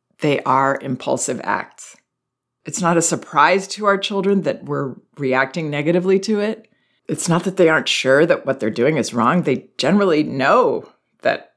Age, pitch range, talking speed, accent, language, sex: 40-59, 145-185 Hz, 170 wpm, American, English, female